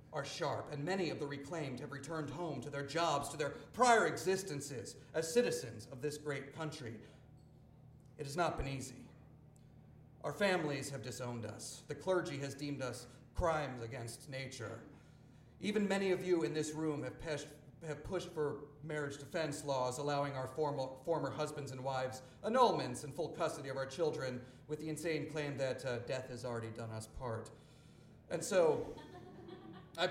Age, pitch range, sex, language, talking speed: 40-59, 130-170 Hz, male, English, 170 wpm